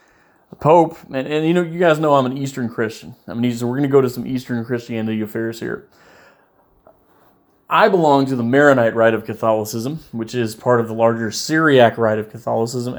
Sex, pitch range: male, 110-145 Hz